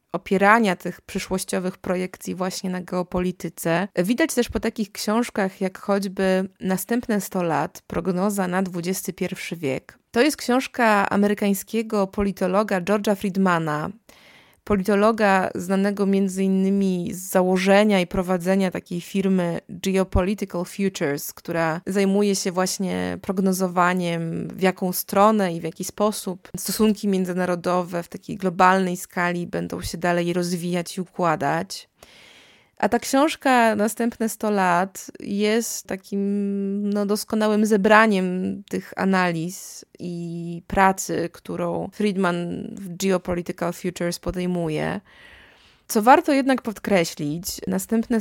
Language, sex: Polish, female